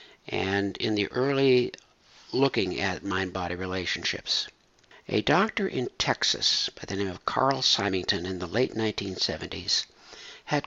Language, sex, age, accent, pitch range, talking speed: English, male, 60-79, American, 100-130 Hz, 130 wpm